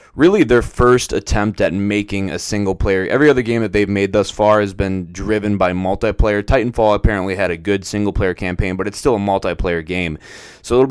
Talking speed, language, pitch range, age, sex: 210 wpm, English, 95-115 Hz, 20-39, male